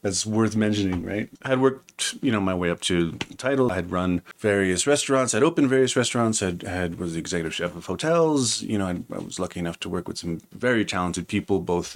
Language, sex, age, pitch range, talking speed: English, male, 30-49, 85-105 Hz, 240 wpm